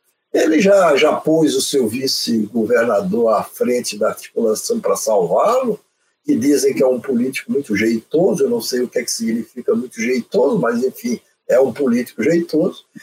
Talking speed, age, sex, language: 165 wpm, 60-79, male, Portuguese